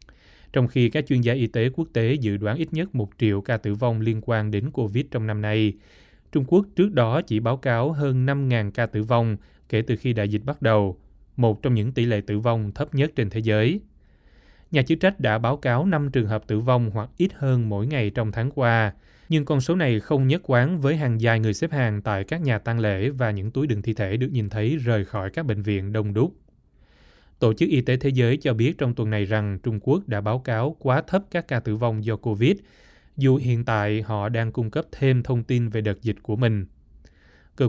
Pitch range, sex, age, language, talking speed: 105-130 Hz, male, 20-39, Vietnamese, 240 wpm